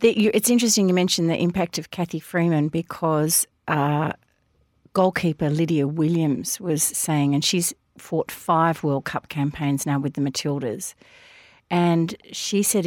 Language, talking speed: English, 140 wpm